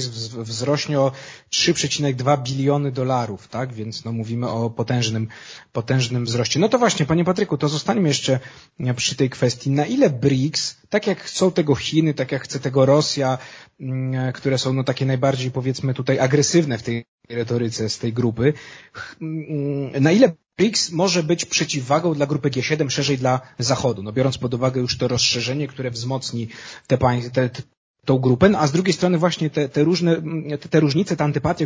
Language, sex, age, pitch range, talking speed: Polish, male, 30-49, 125-150 Hz, 170 wpm